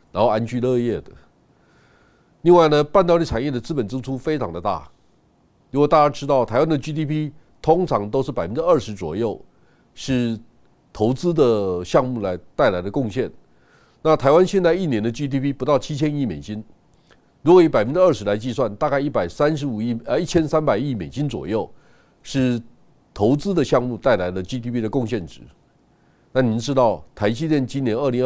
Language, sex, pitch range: Chinese, male, 120-155 Hz